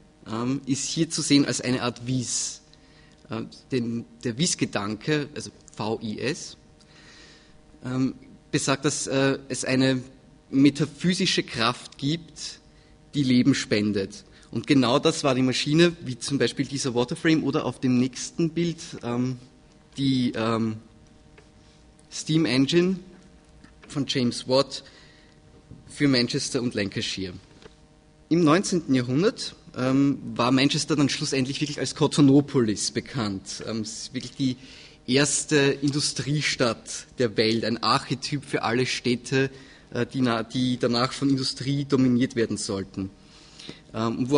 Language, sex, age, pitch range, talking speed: German, male, 30-49, 120-145 Hz, 110 wpm